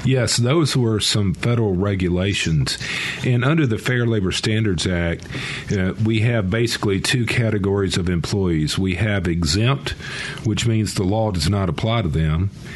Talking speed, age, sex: 155 wpm, 50-69, male